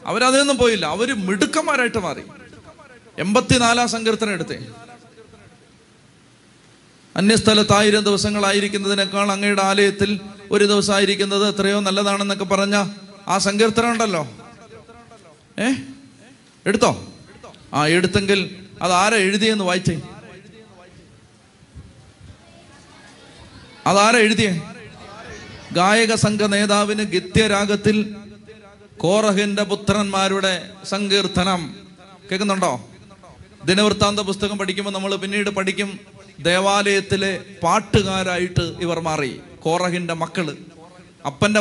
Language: Malayalam